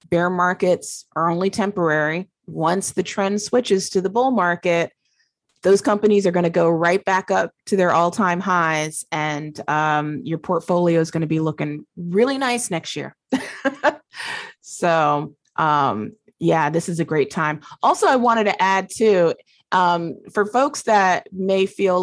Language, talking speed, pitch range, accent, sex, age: English, 160 wpm, 150-190 Hz, American, female, 20-39